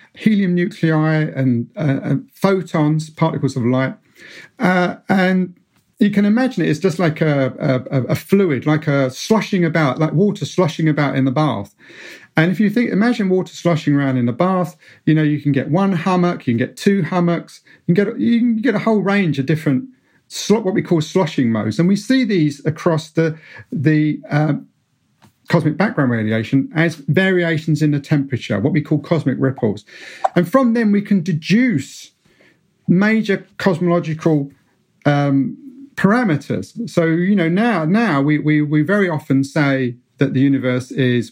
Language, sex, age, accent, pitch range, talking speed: English, male, 40-59, British, 135-185 Hz, 175 wpm